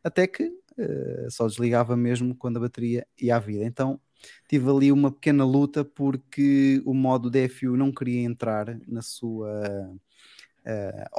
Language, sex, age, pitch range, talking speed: Portuguese, male, 20-39, 120-140 Hz, 150 wpm